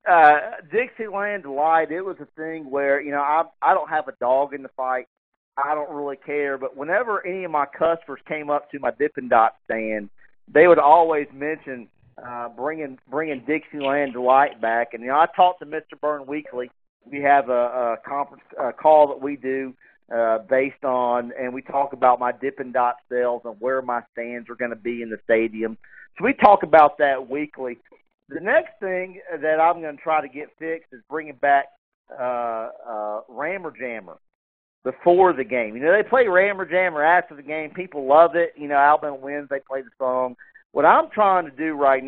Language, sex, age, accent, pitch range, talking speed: English, male, 40-59, American, 130-160 Hz, 200 wpm